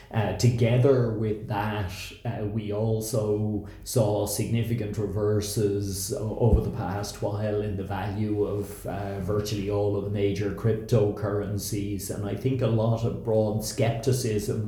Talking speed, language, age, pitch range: 135 wpm, English, 30-49, 105-115 Hz